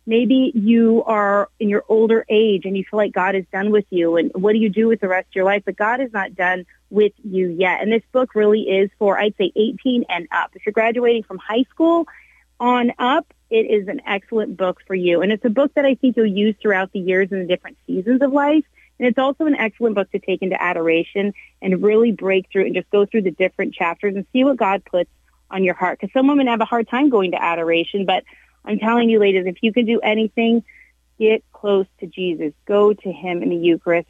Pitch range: 185-230 Hz